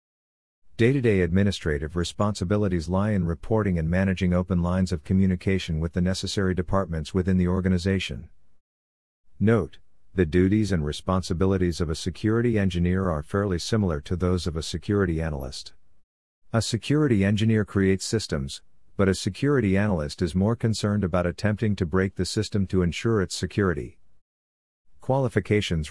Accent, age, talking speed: American, 50-69, 140 wpm